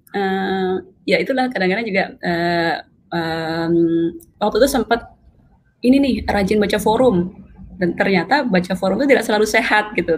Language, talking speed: Indonesian, 140 wpm